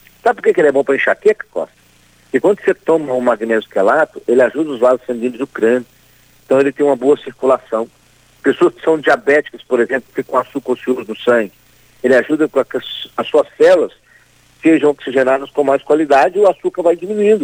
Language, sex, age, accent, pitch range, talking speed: Portuguese, male, 60-79, Brazilian, 120-180 Hz, 205 wpm